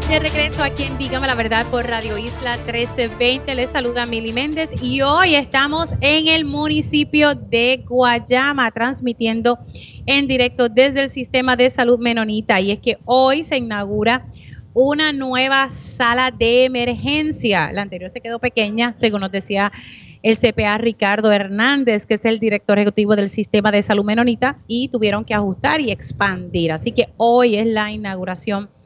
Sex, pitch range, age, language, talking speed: female, 195-245 Hz, 30-49, Spanish, 160 wpm